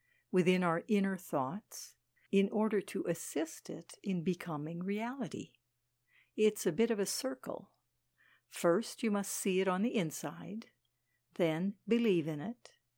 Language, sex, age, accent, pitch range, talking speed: English, female, 60-79, American, 155-220 Hz, 140 wpm